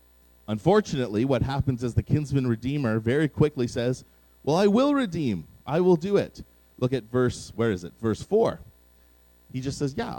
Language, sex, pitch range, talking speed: English, male, 95-135 Hz, 175 wpm